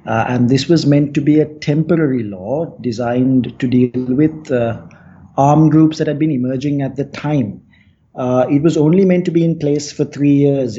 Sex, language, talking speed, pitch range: male, English, 200 wpm, 125-150 Hz